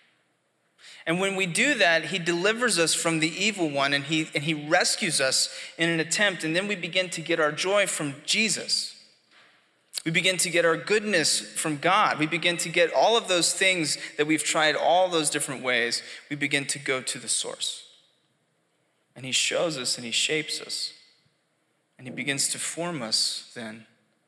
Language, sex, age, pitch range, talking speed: English, male, 20-39, 140-170 Hz, 185 wpm